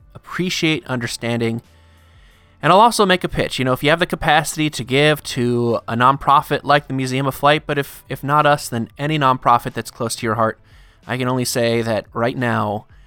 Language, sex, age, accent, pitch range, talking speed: English, male, 20-39, American, 115-165 Hz, 205 wpm